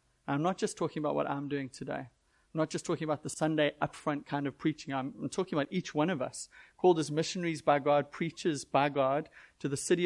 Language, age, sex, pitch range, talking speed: English, 30-49, male, 140-160 Hz, 225 wpm